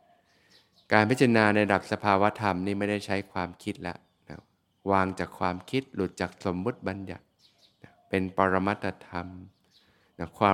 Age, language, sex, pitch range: 20-39, Thai, male, 90-110 Hz